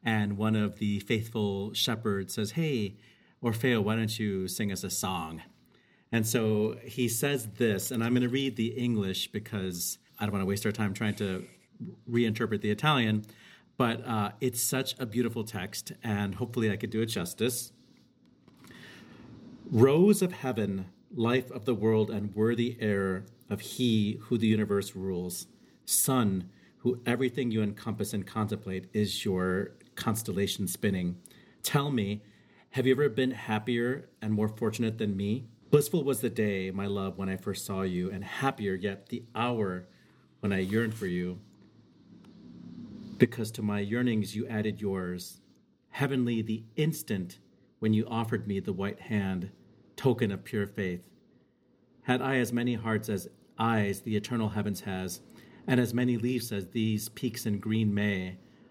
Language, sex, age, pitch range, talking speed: English, male, 40-59, 100-120 Hz, 160 wpm